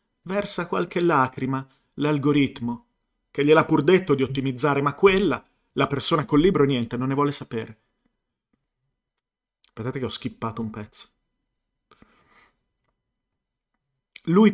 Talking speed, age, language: 115 wpm, 40-59, Italian